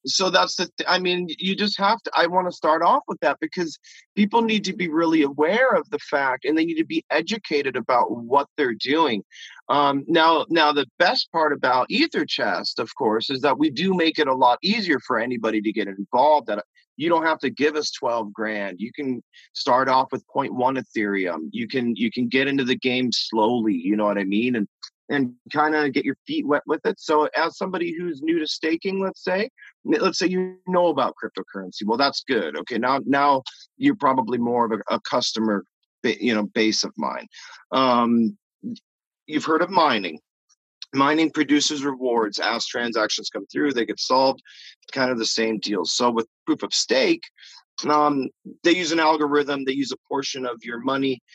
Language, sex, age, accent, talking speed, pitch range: English, male, 30-49, American, 200 wpm, 120-175 Hz